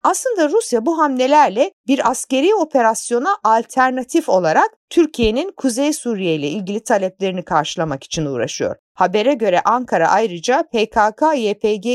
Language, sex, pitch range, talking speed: Turkish, female, 180-280 Hz, 115 wpm